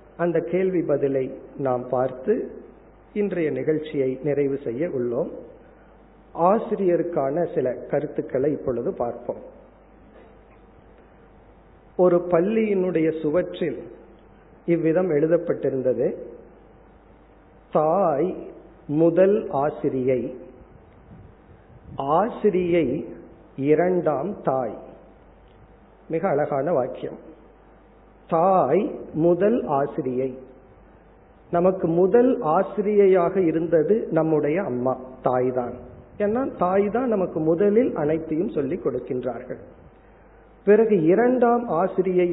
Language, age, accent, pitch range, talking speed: Tamil, 50-69, native, 145-195 Hz, 70 wpm